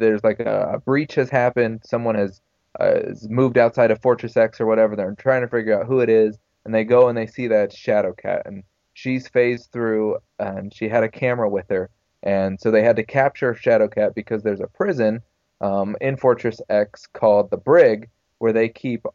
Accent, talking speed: American, 205 wpm